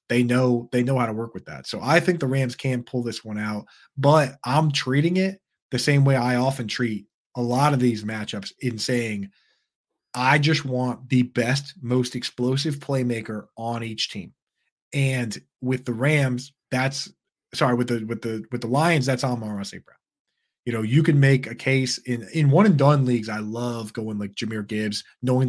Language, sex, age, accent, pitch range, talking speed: English, male, 30-49, American, 115-140 Hz, 195 wpm